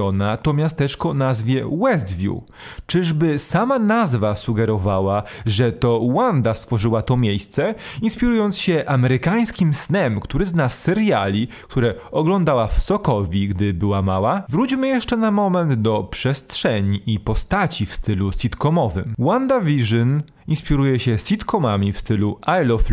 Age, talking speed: 30-49, 125 wpm